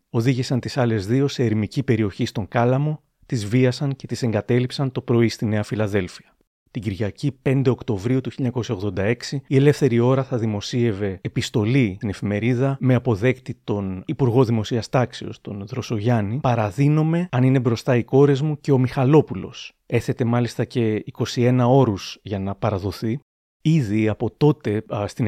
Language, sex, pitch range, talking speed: Greek, male, 110-135 Hz, 145 wpm